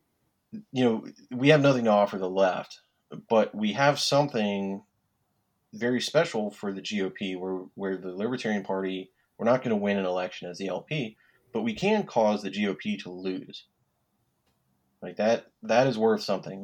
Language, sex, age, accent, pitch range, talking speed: English, male, 30-49, American, 95-110 Hz, 170 wpm